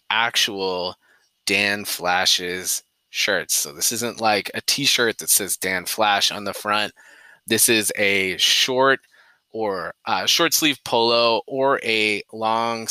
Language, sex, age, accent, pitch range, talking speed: English, male, 20-39, American, 95-115 Hz, 135 wpm